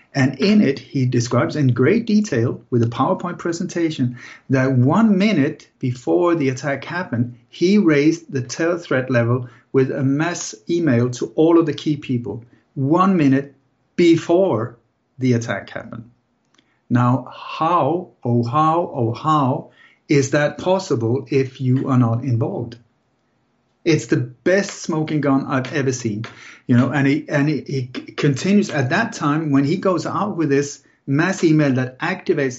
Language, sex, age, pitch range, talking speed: English, male, 60-79, 125-155 Hz, 155 wpm